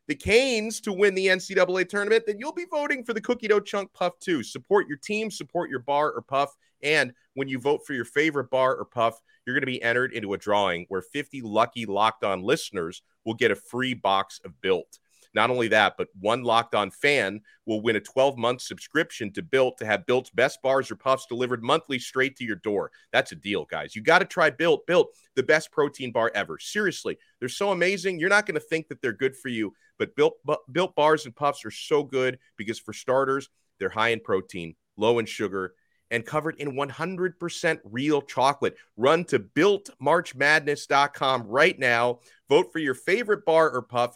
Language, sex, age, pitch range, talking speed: English, male, 30-49, 115-185 Hz, 205 wpm